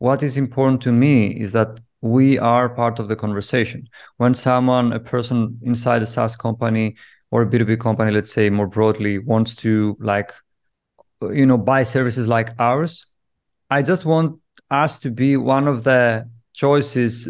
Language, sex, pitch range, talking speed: English, male, 115-140 Hz, 165 wpm